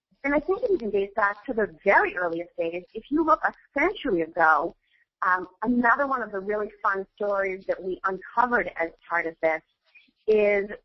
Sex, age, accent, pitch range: female, 40-59, American, 190-290 Hz